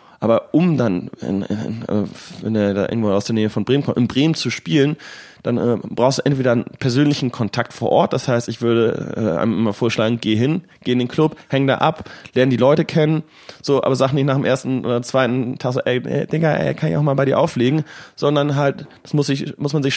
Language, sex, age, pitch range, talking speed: German, male, 30-49, 120-145 Hz, 235 wpm